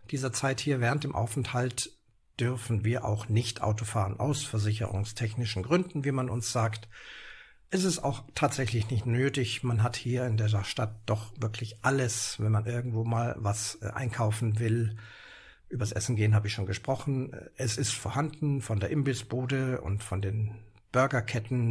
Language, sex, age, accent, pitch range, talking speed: German, male, 60-79, German, 110-130 Hz, 160 wpm